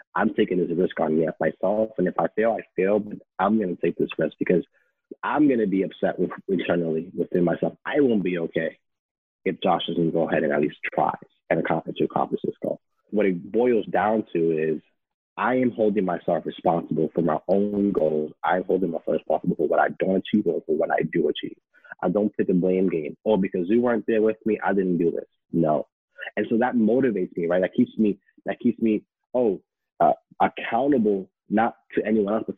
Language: English